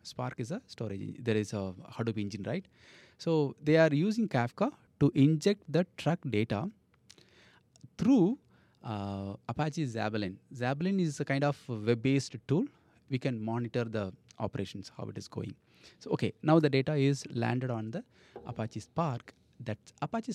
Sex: male